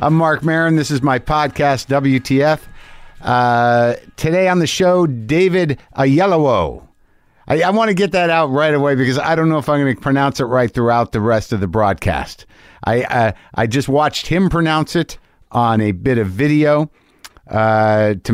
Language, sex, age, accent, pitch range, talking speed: English, male, 50-69, American, 110-155 Hz, 185 wpm